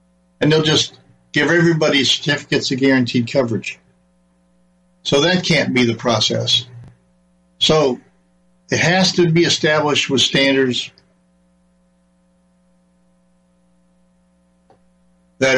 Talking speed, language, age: 90 wpm, English, 60-79